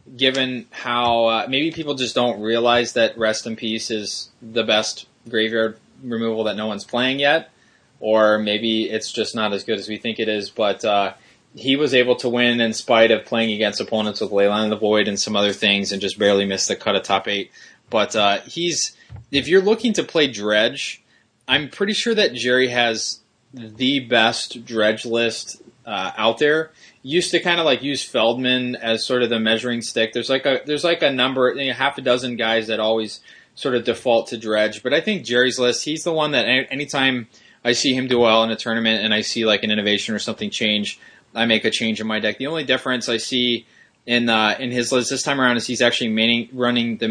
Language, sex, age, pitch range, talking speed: English, male, 20-39, 110-125 Hz, 220 wpm